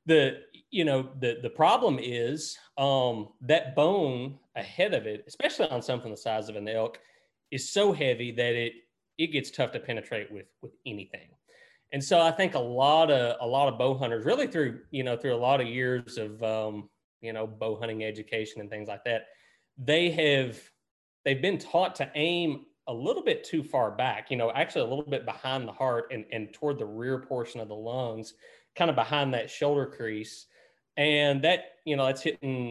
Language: English